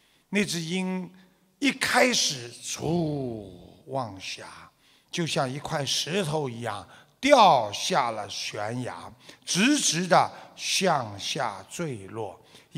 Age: 60-79